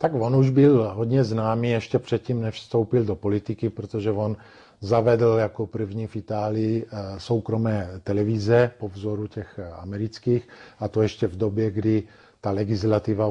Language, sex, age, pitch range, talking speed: Slovak, male, 50-69, 105-120 Hz, 150 wpm